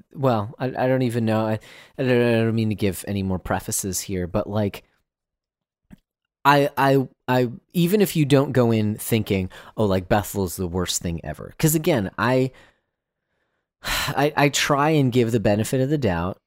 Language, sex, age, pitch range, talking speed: English, male, 30-49, 90-125 Hz, 185 wpm